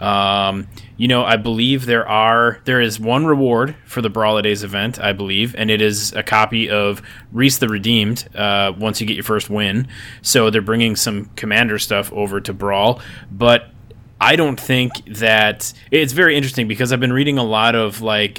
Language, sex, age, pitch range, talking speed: English, male, 20-39, 105-120 Hz, 195 wpm